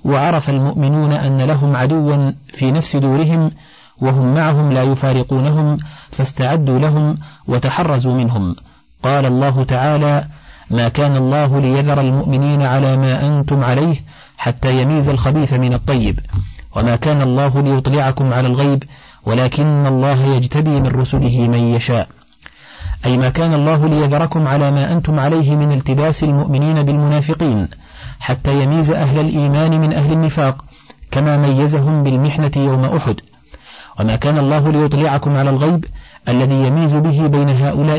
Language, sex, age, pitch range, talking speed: Arabic, male, 50-69, 130-150 Hz, 130 wpm